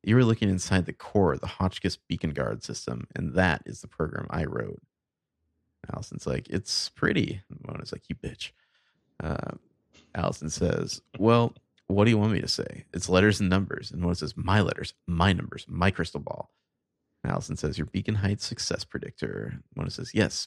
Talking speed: 190 wpm